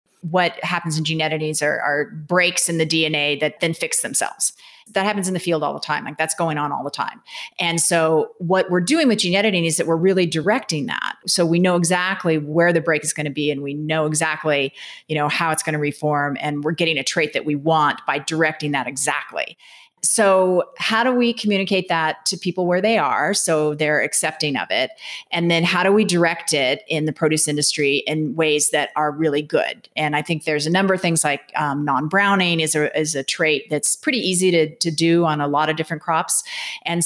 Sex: female